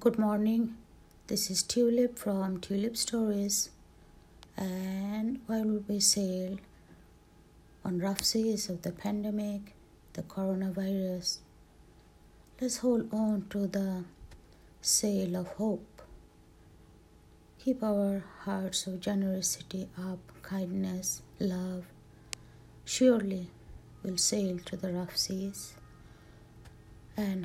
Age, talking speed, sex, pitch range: 60-79, 100 wpm, female, 120-200 Hz